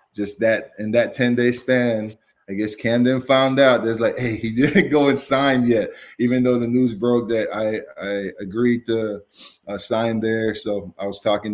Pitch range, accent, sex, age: 105-120 Hz, American, male, 20-39